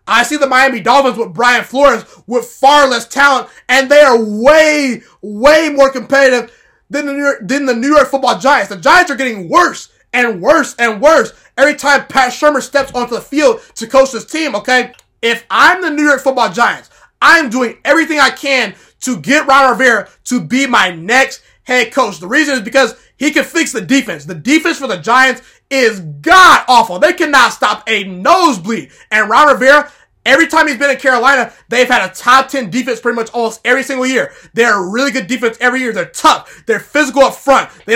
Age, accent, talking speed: 20-39, American, 200 wpm